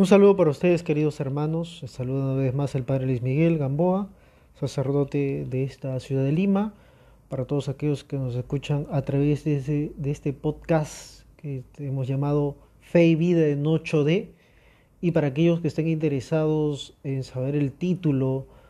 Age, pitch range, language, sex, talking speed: 30-49, 135-165 Hz, Spanish, male, 165 wpm